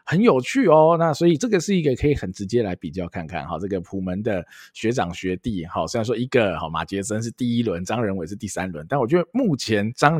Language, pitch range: Chinese, 95-145 Hz